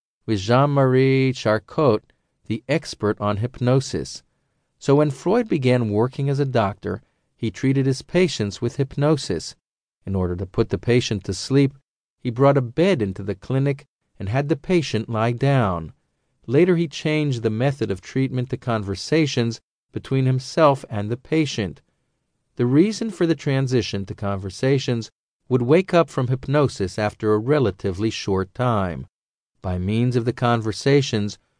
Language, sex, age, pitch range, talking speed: English, male, 40-59, 105-140 Hz, 150 wpm